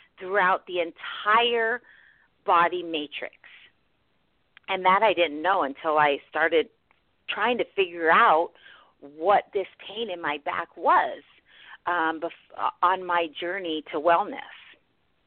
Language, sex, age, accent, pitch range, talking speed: English, female, 40-59, American, 165-235 Hz, 120 wpm